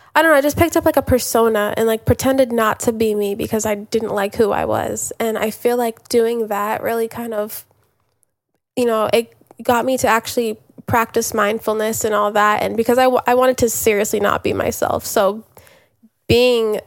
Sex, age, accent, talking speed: female, 10-29, American, 205 wpm